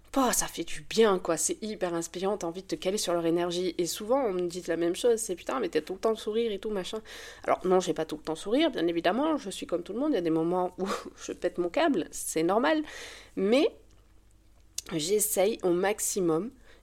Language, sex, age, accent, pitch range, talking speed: French, female, 20-39, French, 165-215 Hz, 240 wpm